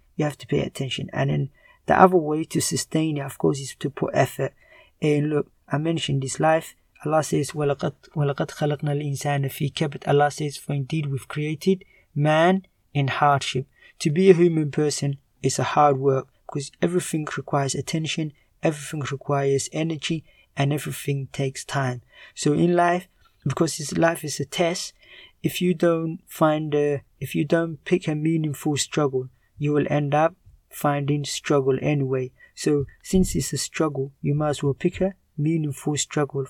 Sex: male